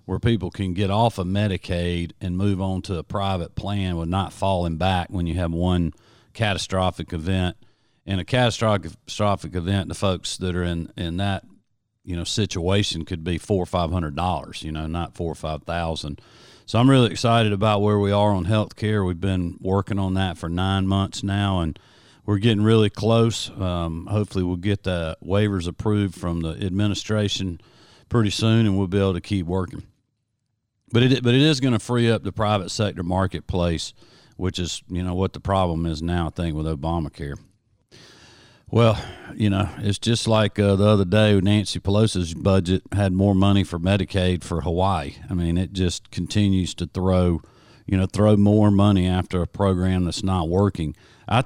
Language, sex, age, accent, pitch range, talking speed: English, male, 40-59, American, 90-105 Hz, 185 wpm